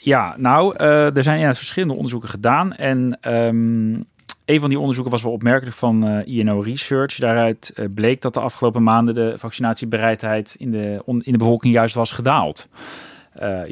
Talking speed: 185 wpm